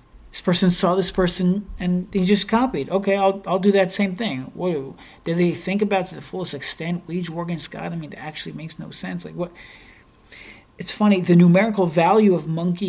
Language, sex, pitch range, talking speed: English, male, 170-205 Hz, 215 wpm